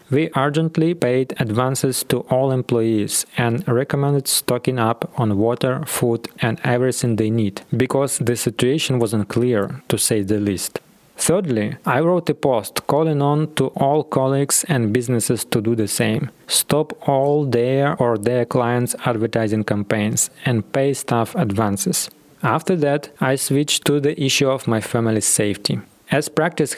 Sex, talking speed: male, 150 wpm